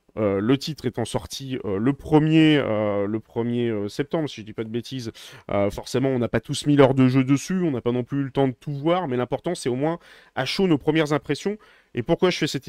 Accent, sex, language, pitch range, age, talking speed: French, male, French, 130-175 Hz, 30-49, 255 wpm